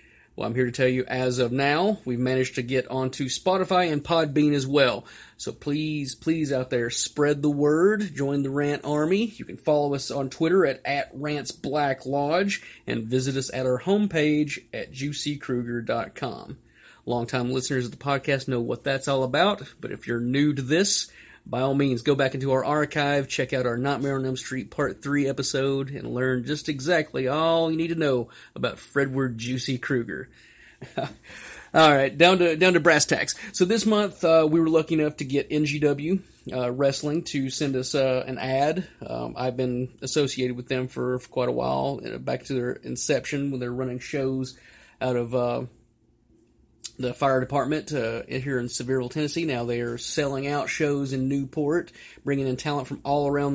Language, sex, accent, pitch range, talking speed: English, male, American, 125-150 Hz, 185 wpm